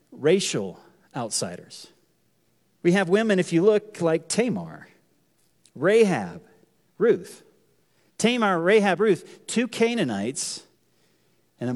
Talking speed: 95 wpm